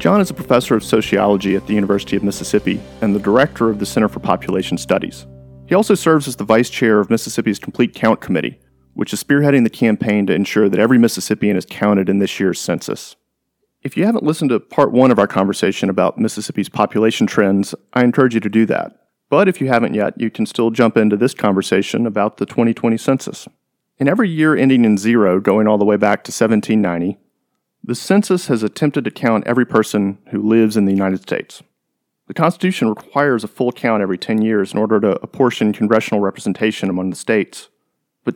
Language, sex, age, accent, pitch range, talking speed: English, male, 40-59, American, 105-130 Hz, 205 wpm